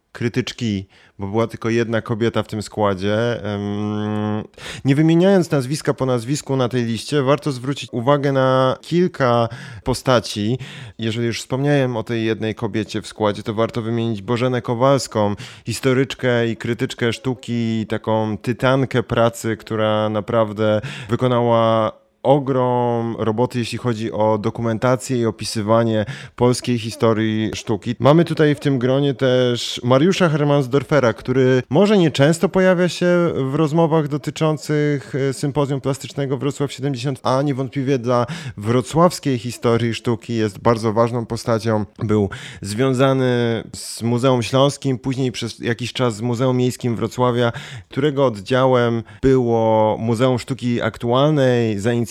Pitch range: 115-135 Hz